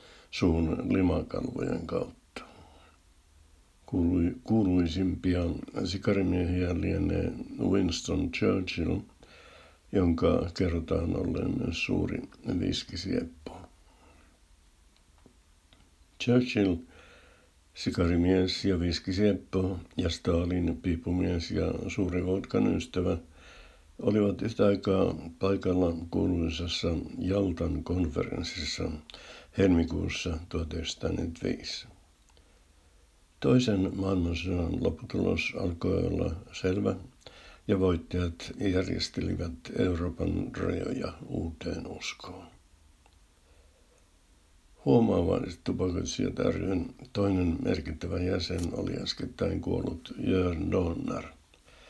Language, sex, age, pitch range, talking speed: Finnish, male, 60-79, 80-95 Hz, 65 wpm